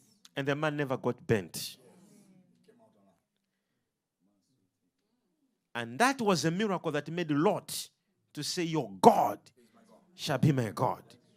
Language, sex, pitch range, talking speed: English, male, 145-205 Hz, 115 wpm